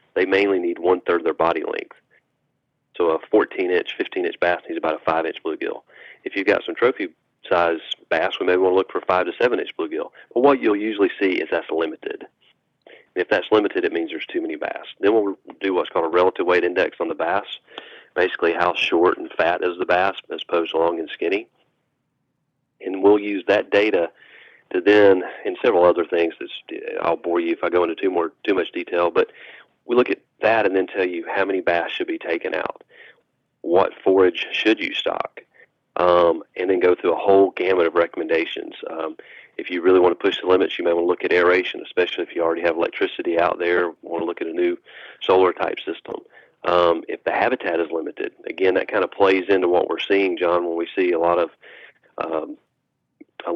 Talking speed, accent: 215 wpm, American